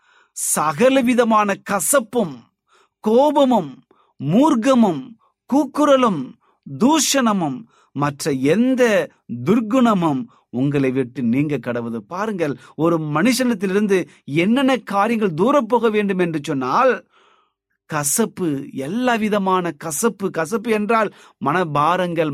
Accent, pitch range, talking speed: native, 165-245 Hz, 80 wpm